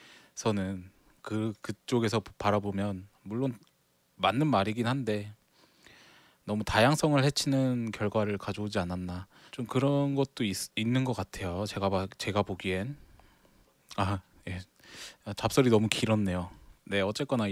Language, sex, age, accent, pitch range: Korean, male, 20-39, native, 100-135 Hz